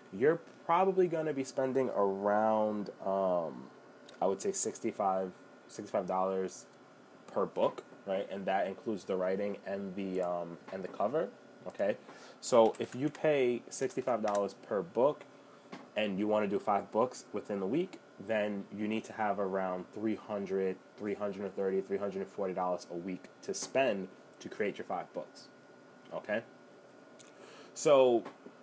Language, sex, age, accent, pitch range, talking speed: English, male, 20-39, American, 95-115 Hz, 160 wpm